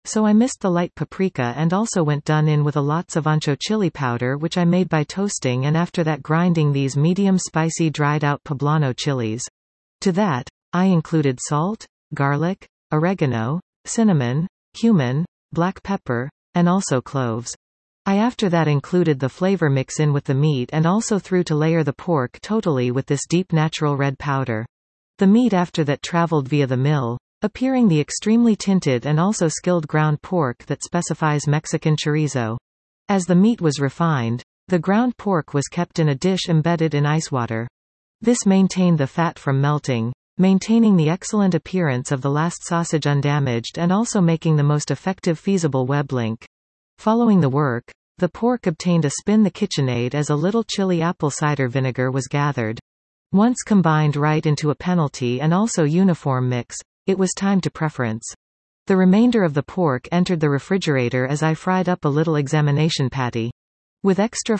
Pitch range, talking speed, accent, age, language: 140-180 Hz, 175 wpm, American, 40-59, English